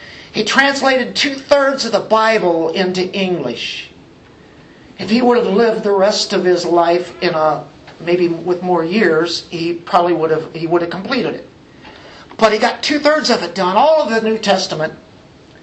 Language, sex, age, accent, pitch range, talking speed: English, male, 50-69, American, 175-225 Hz, 180 wpm